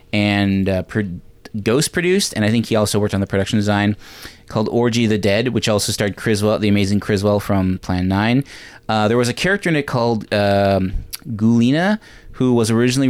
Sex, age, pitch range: male, 20-39, 100-120 Hz